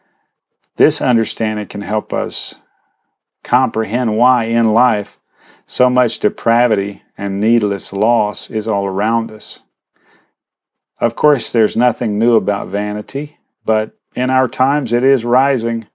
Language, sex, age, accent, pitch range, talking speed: English, male, 40-59, American, 105-125 Hz, 125 wpm